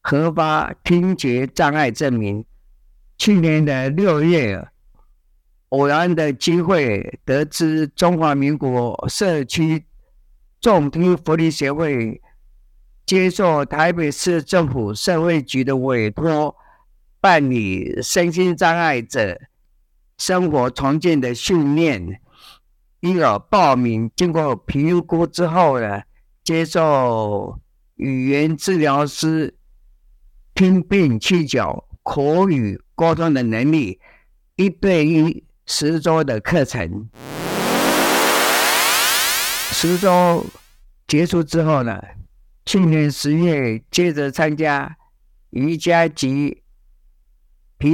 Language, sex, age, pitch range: Chinese, male, 50-69, 120-165 Hz